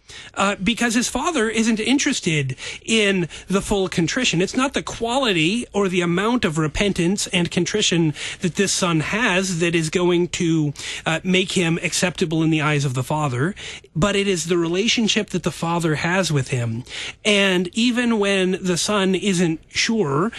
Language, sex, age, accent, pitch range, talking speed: English, male, 30-49, American, 170-215 Hz, 170 wpm